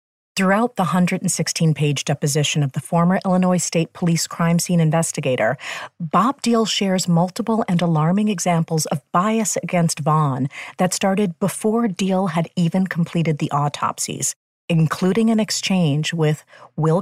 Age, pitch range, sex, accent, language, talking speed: 40-59, 155-190 Hz, female, American, English, 135 wpm